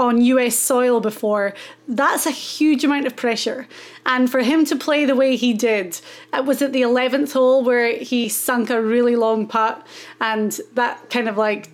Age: 30-49